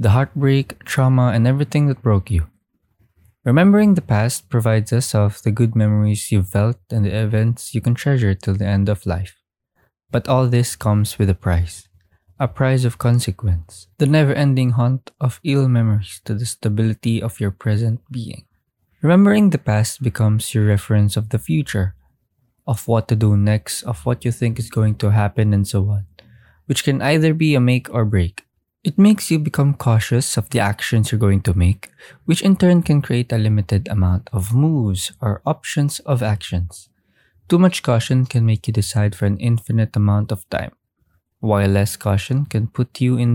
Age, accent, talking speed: 20-39, Filipino, 185 wpm